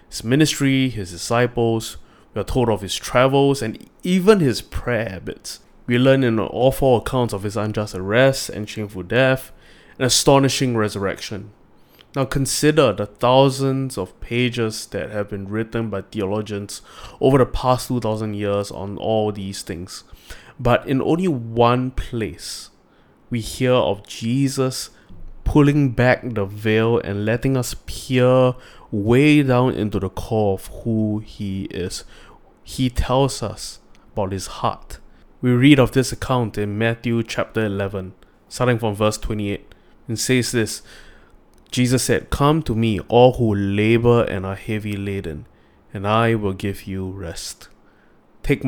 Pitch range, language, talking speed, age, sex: 100-125 Hz, English, 145 wpm, 20-39, male